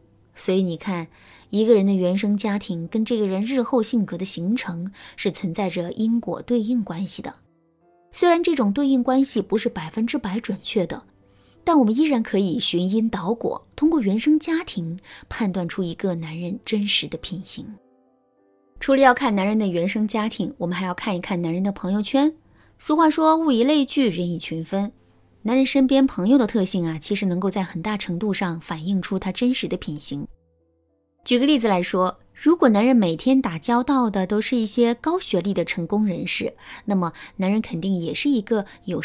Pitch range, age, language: 180-250 Hz, 20-39, Chinese